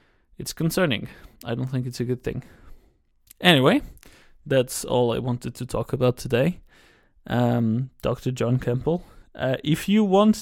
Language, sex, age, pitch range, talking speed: English, male, 20-39, 115-135 Hz, 150 wpm